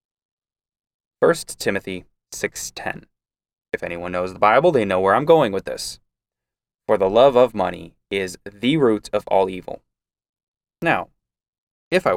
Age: 20-39